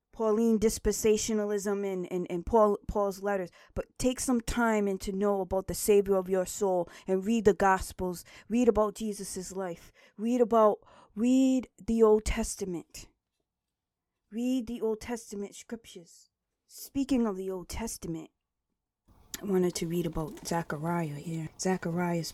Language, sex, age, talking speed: English, female, 20-39, 140 wpm